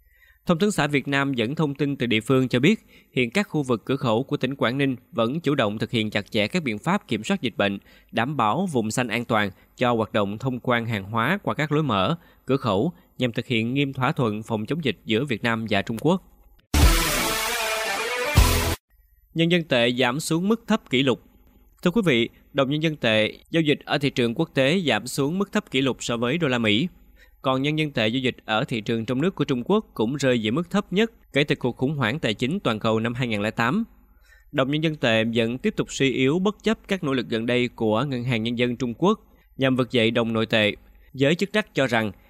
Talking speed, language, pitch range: 240 wpm, Vietnamese, 115-155 Hz